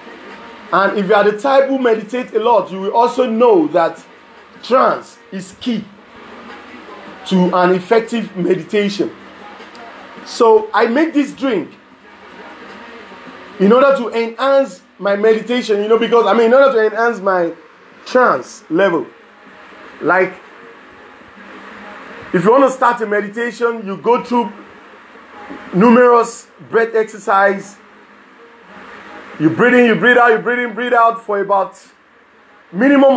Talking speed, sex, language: 130 wpm, male, English